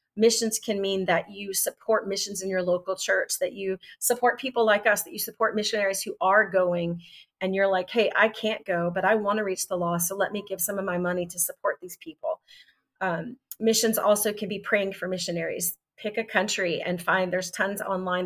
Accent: American